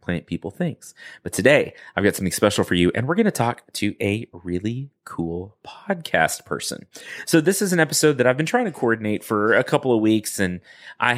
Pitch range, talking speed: 90-145 Hz, 215 wpm